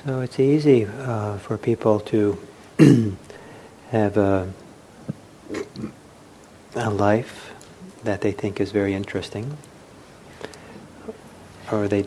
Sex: male